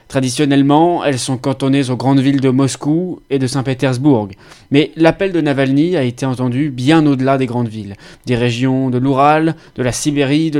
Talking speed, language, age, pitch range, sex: 180 wpm, French, 20-39, 125-155 Hz, male